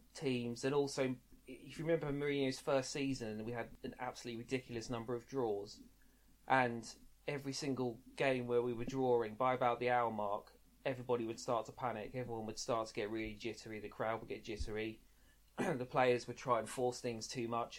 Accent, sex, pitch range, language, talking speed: British, male, 115-130 Hz, English, 190 wpm